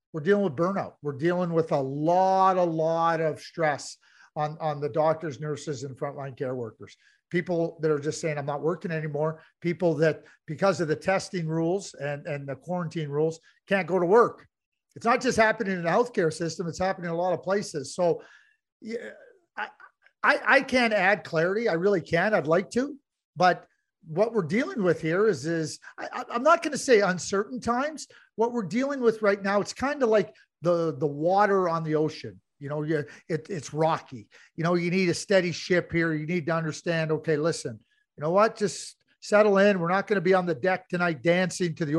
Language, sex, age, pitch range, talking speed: English, male, 50-69, 160-205 Hz, 210 wpm